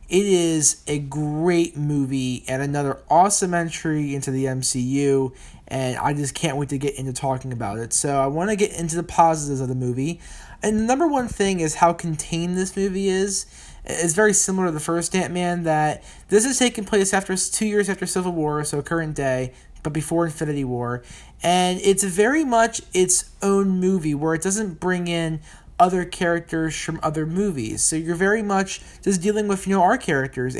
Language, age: English, 20-39